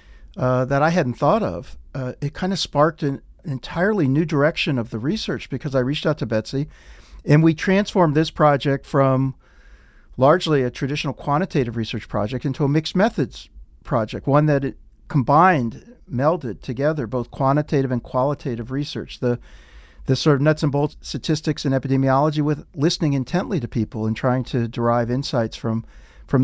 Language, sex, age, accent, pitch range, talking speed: English, male, 50-69, American, 120-155 Hz, 170 wpm